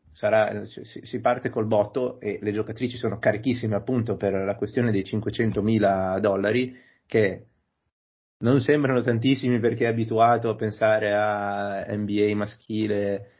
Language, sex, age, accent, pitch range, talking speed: Italian, male, 30-49, native, 105-120 Hz, 135 wpm